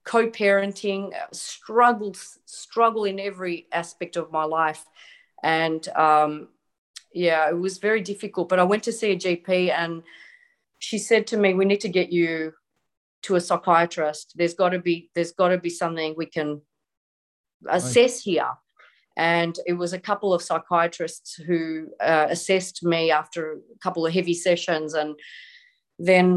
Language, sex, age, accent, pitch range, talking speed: English, female, 30-49, Australian, 170-220 Hz, 155 wpm